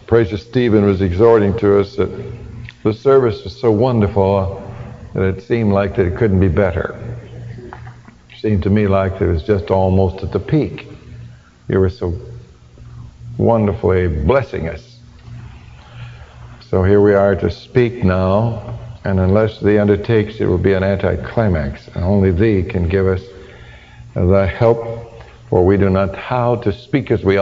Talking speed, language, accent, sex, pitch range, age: 160 wpm, English, American, male, 95-115 Hz, 60-79